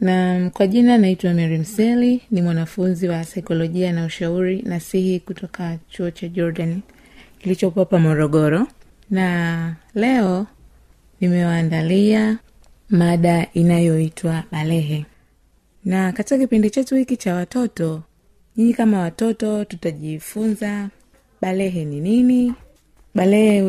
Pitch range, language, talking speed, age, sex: 165-215 Hz, Swahili, 105 wpm, 30-49, female